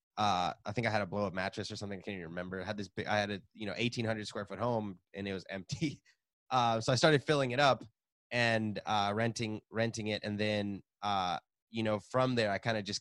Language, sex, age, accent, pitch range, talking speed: English, male, 20-39, American, 100-130 Hz, 255 wpm